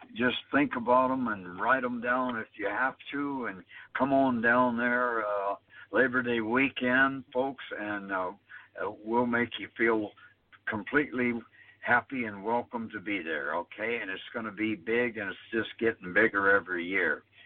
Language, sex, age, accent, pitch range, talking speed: English, male, 60-79, American, 105-120 Hz, 170 wpm